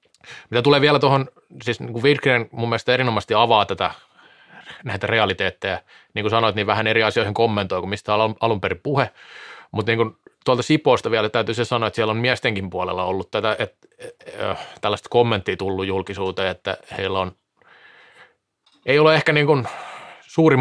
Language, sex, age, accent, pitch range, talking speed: Finnish, male, 30-49, native, 110-140 Hz, 155 wpm